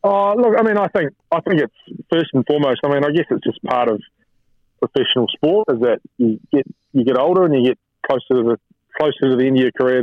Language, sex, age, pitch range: English, male, 20-39, 120-140 Hz